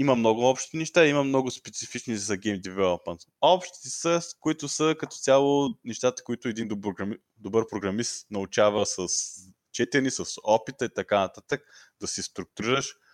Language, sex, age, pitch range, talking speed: Bulgarian, male, 20-39, 100-135 Hz, 155 wpm